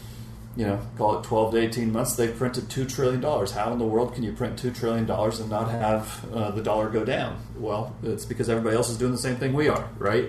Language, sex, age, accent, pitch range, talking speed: English, male, 30-49, American, 105-120 Hz, 245 wpm